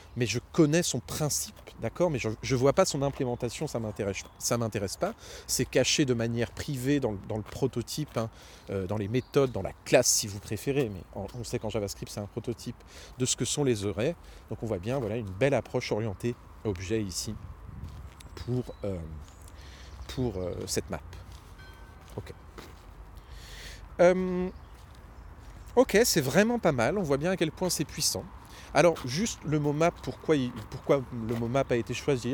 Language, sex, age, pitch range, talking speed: French, male, 40-59, 100-135 Hz, 185 wpm